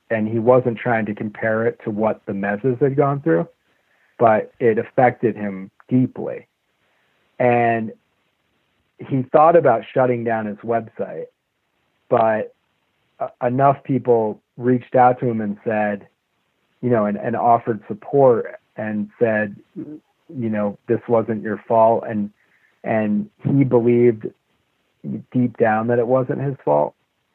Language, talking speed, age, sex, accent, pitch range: English, 135 wpm, 40-59, male, American, 105-125 Hz